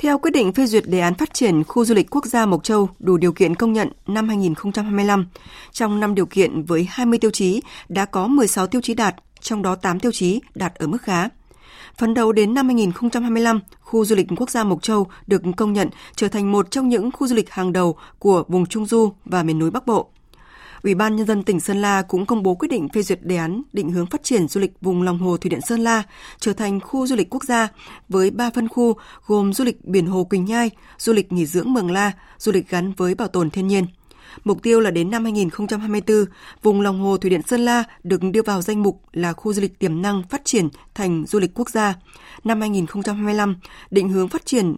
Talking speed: 240 wpm